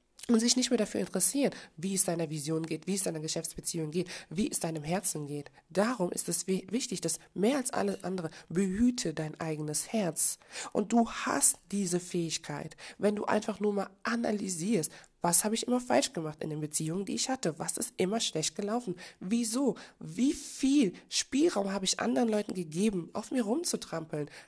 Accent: German